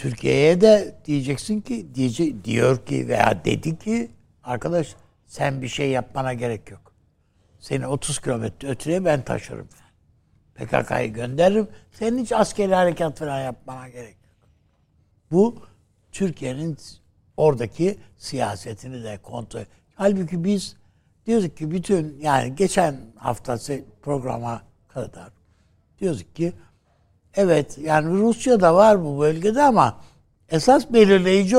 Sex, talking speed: male, 115 wpm